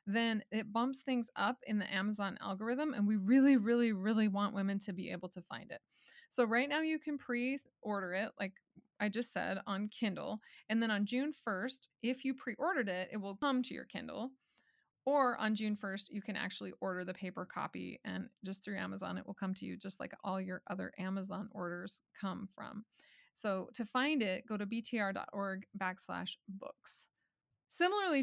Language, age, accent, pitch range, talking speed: English, 20-39, American, 200-255 Hz, 190 wpm